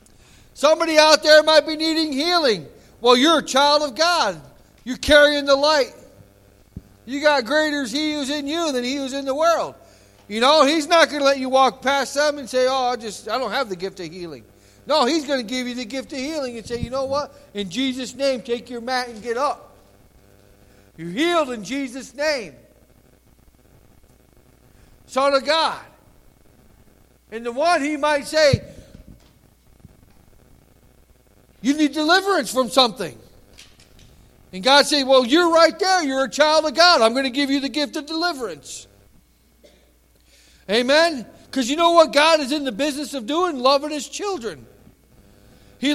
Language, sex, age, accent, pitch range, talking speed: English, male, 60-79, American, 245-305 Hz, 175 wpm